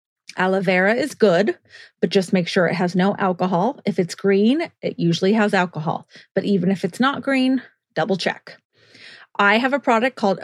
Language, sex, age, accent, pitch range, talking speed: English, female, 30-49, American, 185-220 Hz, 185 wpm